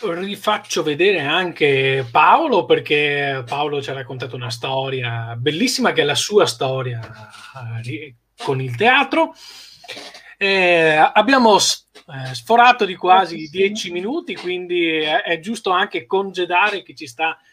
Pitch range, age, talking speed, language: 135-195 Hz, 20-39, 120 wpm, Italian